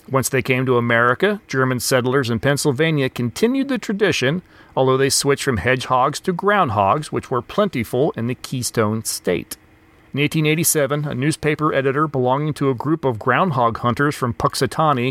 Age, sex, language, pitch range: 40-59, male, English, 125-160 Hz